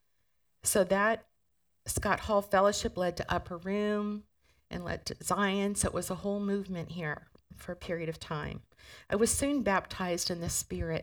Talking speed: 175 wpm